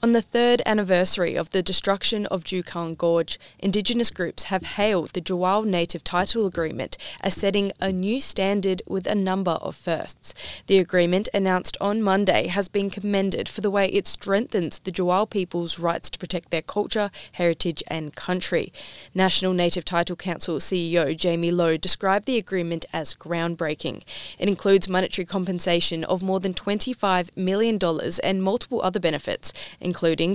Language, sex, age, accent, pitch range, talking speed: English, female, 20-39, Australian, 170-195 Hz, 155 wpm